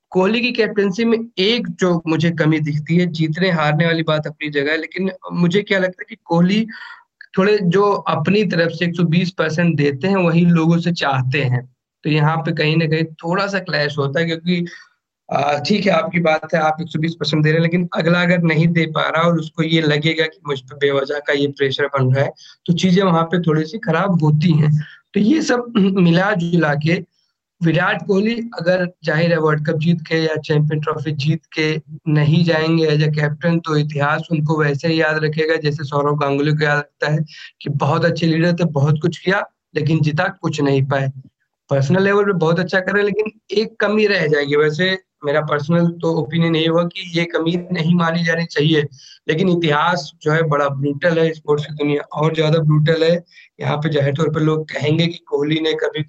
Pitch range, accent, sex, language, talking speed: 150-175 Hz, native, male, Hindi, 200 wpm